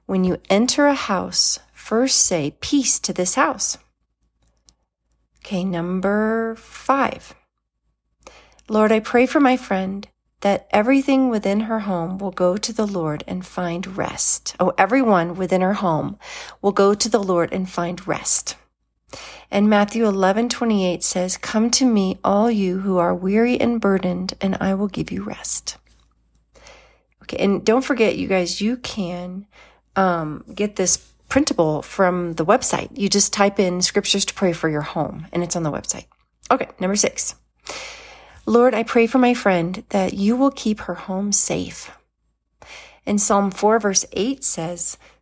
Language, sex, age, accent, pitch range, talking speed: English, female, 40-59, American, 180-225 Hz, 155 wpm